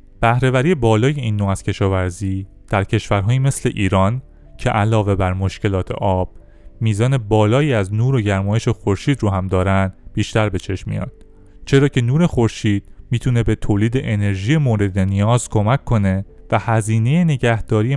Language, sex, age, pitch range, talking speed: Persian, male, 30-49, 95-120 Hz, 145 wpm